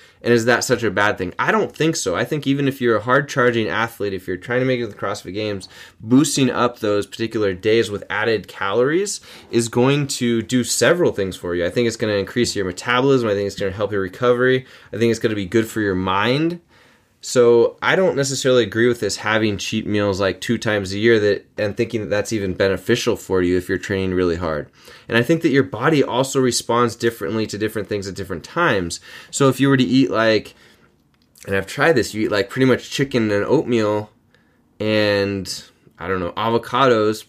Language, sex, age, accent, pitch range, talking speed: English, male, 20-39, American, 100-130 Hz, 225 wpm